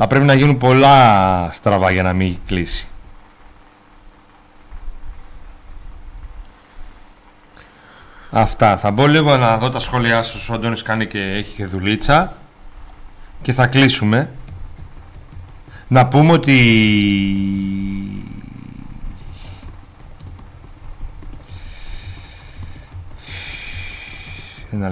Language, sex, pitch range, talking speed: Greek, male, 95-140 Hz, 75 wpm